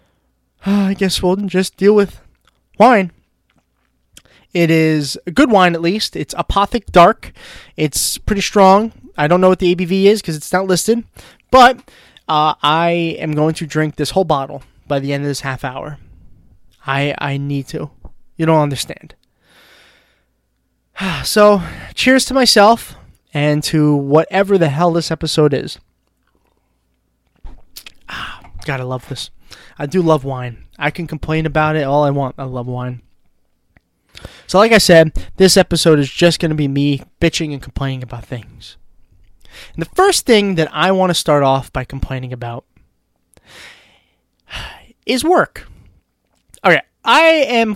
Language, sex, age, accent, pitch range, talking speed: English, male, 20-39, American, 130-185 Hz, 155 wpm